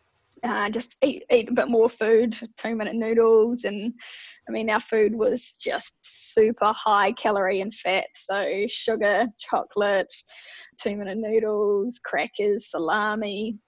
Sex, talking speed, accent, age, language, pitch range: female, 125 wpm, Australian, 20-39, English, 215-245 Hz